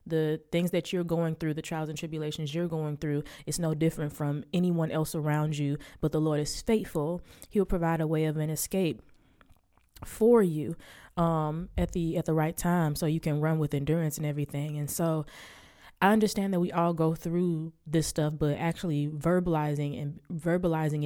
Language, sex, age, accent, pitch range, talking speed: English, female, 20-39, American, 150-170 Hz, 190 wpm